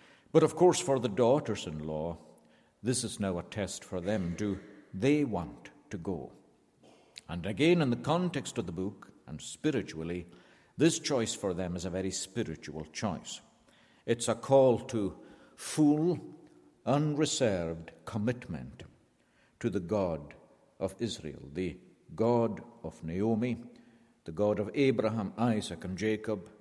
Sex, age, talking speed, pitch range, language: male, 60-79, 135 wpm, 85-120 Hz, English